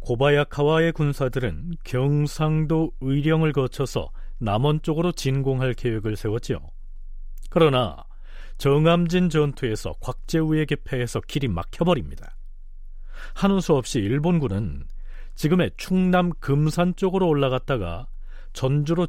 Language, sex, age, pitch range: Korean, male, 40-59, 115-155 Hz